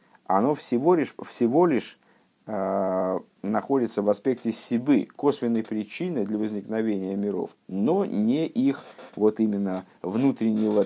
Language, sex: Russian, male